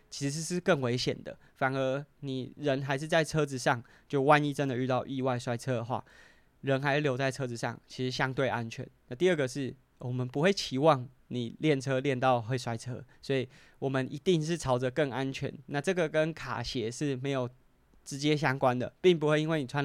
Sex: male